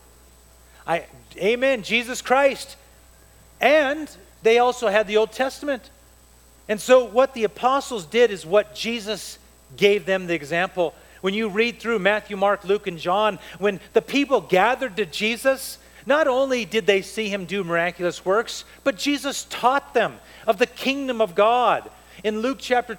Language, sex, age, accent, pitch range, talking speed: English, male, 40-59, American, 190-240 Hz, 155 wpm